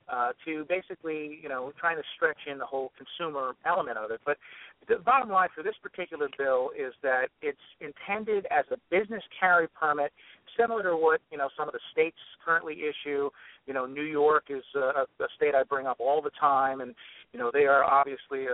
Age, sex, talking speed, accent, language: 50-69, male, 205 wpm, American, English